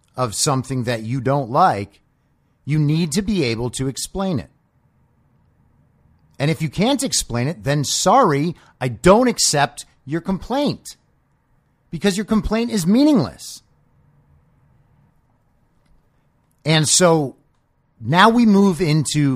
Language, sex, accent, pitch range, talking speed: English, male, American, 115-170 Hz, 120 wpm